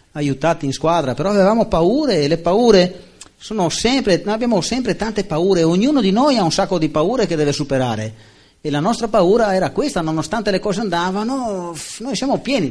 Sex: male